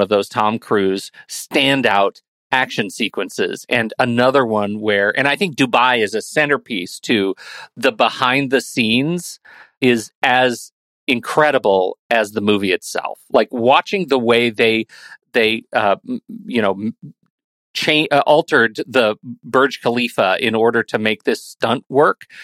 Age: 40-59